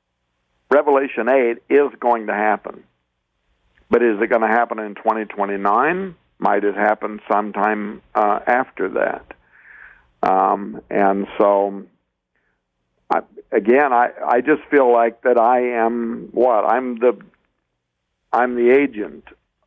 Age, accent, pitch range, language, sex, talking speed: 60-79, American, 105-125 Hz, English, male, 130 wpm